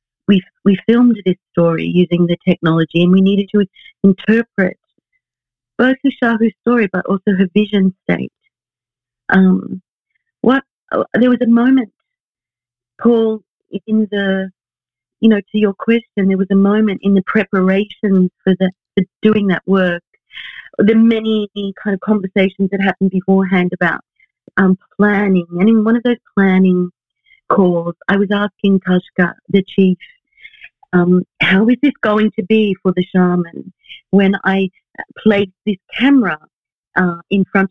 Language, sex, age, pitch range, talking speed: English, female, 50-69, 185-215 Hz, 145 wpm